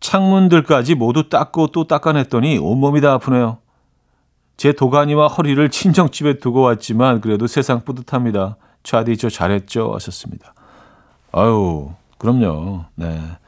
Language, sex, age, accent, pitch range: Korean, male, 40-59, native, 105-155 Hz